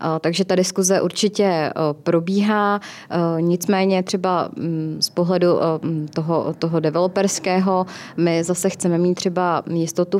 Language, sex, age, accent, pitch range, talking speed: Czech, female, 20-39, native, 165-190 Hz, 105 wpm